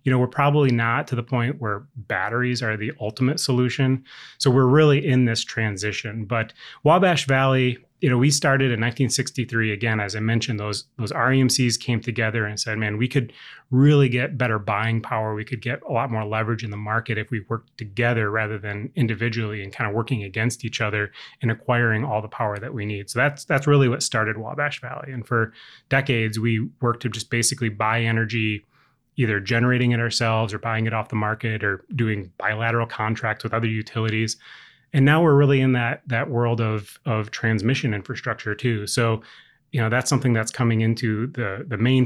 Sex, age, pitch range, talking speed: male, 30-49, 110-130 Hz, 200 wpm